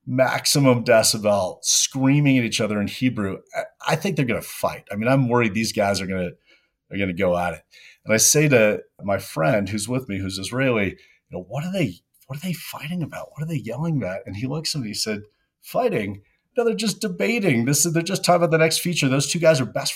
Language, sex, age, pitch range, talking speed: English, male, 30-49, 95-135 Hz, 245 wpm